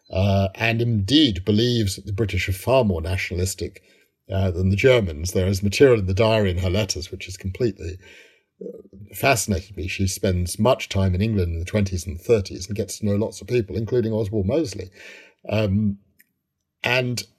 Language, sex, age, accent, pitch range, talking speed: English, male, 50-69, British, 95-120 Hz, 180 wpm